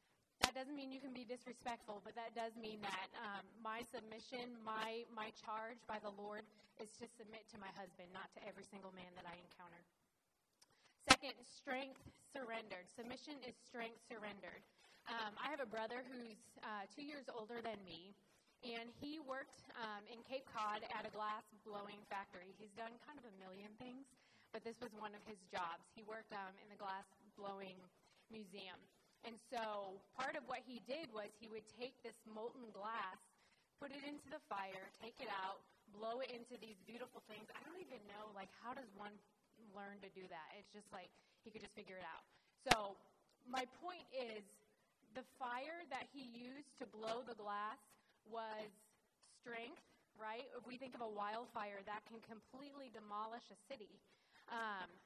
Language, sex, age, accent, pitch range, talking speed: English, female, 20-39, American, 205-245 Hz, 180 wpm